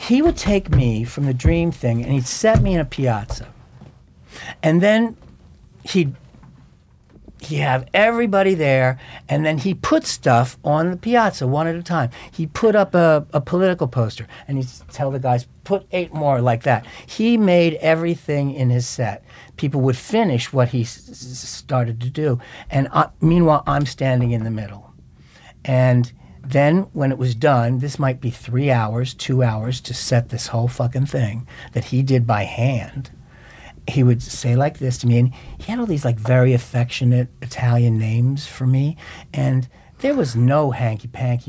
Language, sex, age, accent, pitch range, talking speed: English, male, 60-79, American, 120-155 Hz, 180 wpm